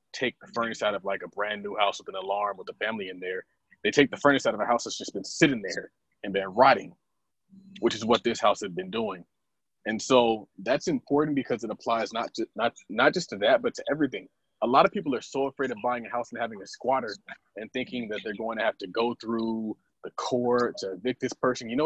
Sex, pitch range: male, 115-160 Hz